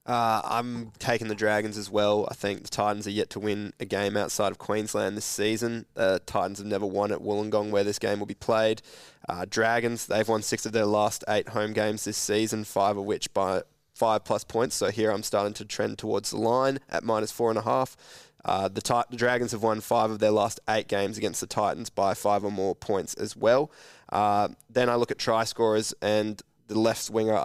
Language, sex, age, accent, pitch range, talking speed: English, male, 20-39, Australian, 105-115 Hz, 230 wpm